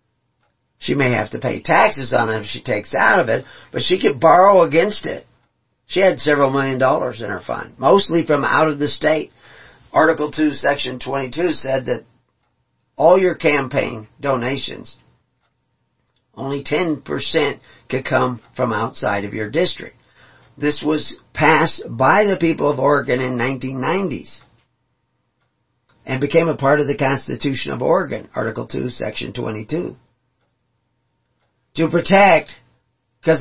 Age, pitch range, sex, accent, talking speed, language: 50-69, 130-160 Hz, male, American, 140 wpm, English